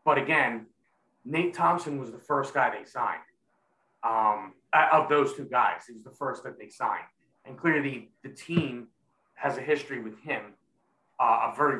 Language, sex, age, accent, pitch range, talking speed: English, male, 30-49, American, 125-165 Hz, 175 wpm